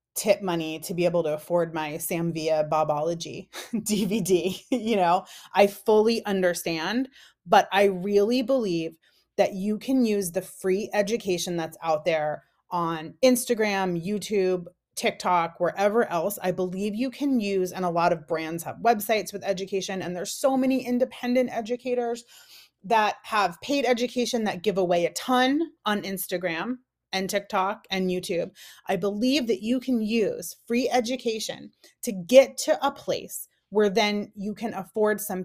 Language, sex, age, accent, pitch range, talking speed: English, female, 30-49, American, 180-230 Hz, 150 wpm